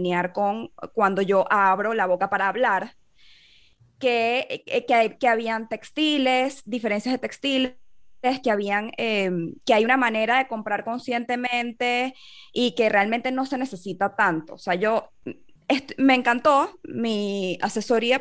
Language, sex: Spanish, female